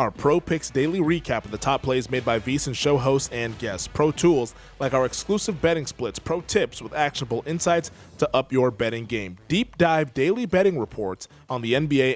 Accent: American